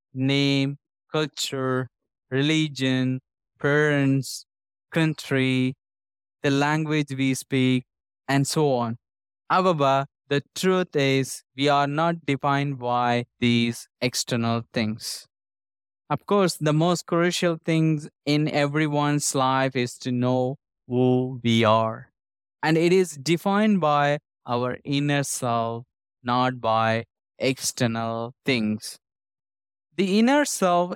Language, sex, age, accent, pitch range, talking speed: English, male, 20-39, Indian, 120-150 Hz, 105 wpm